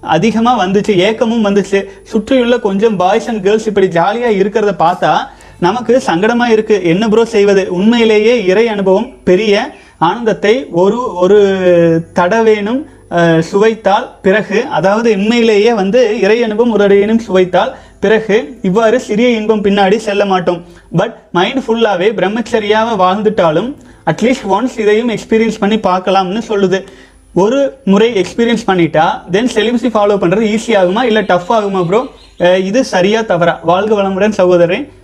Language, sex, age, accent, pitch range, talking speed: Tamil, male, 30-49, native, 185-230 Hz, 125 wpm